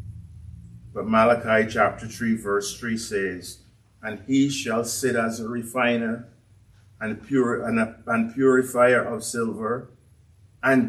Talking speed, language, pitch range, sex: 105 wpm, English, 100-140 Hz, male